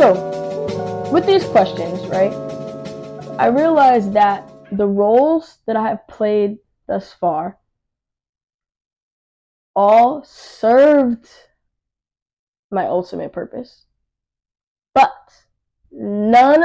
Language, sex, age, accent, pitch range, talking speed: English, female, 10-29, American, 195-235 Hz, 85 wpm